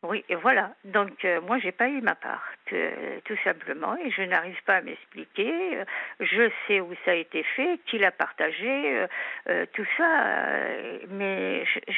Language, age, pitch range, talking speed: French, 50-69, 195-260 Hz, 185 wpm